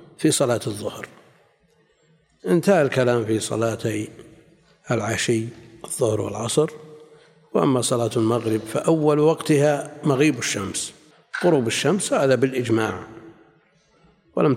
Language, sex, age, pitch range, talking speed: Arabic, male, 60-79, 115-150 Hz, 90 wpm